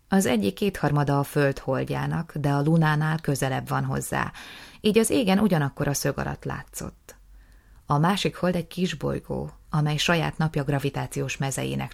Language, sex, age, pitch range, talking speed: Hungarian, female, 30-49, 135-175 Hz, 150 wpm